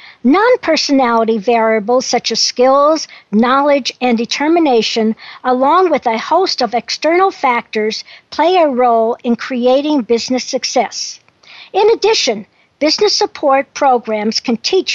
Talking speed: 120 wpm